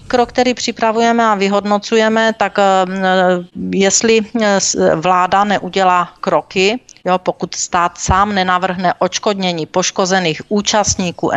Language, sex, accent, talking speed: Czech, female, native, 95 wpm